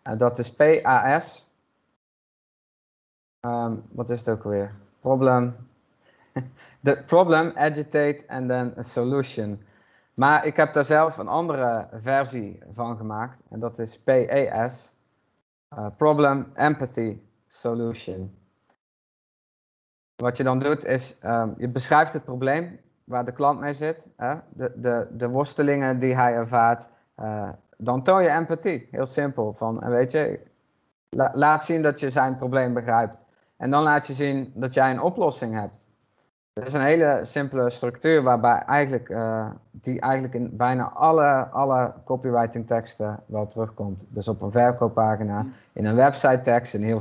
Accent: Dutch